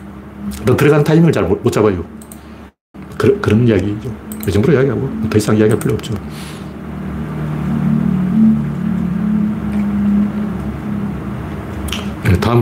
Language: Korean